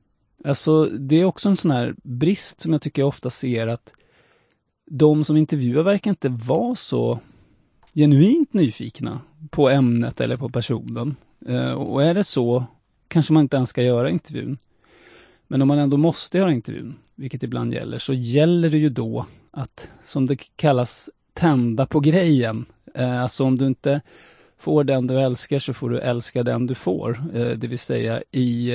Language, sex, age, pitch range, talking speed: English, male, 30-49, 120-150 Hz, 170 wpm